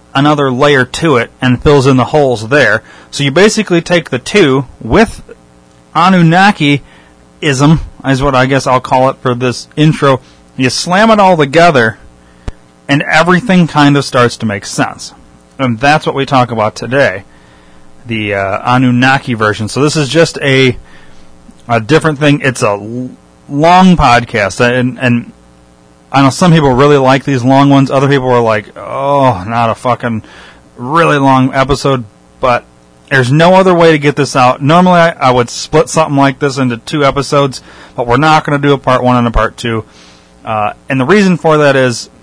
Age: 30-49